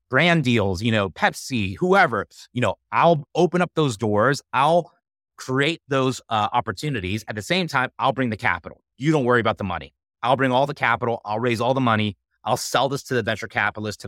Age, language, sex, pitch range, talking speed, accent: 30-49, English, male, 105-135 Hz, 215 wpm, American